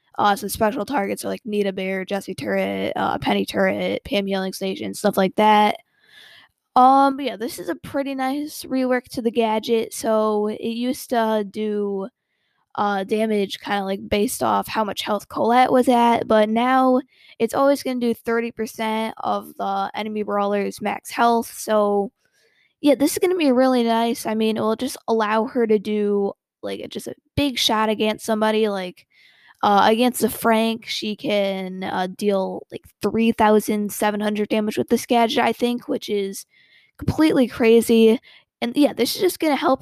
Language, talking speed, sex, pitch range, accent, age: English, 175 wpm, female, 205-245 Hz, American, 10-29